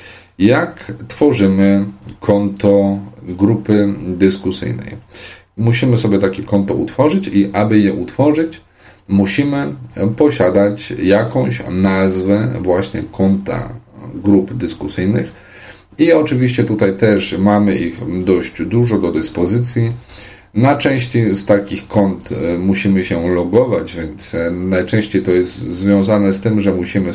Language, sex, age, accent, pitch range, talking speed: Polish, male, 40-59, native, 95-110 Hz, 110 wpm